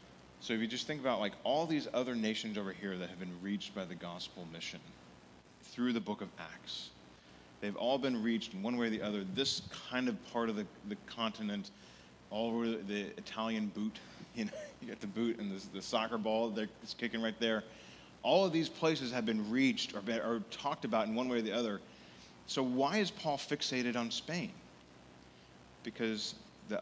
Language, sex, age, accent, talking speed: English, male, 30-49, American, 205 wpm